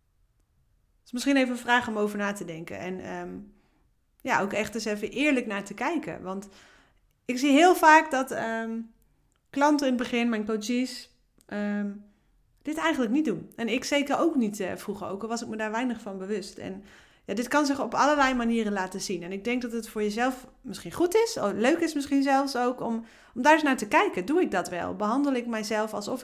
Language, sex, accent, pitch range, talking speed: Dutch, female, Dutch, 190-250 Hz, 215 wpm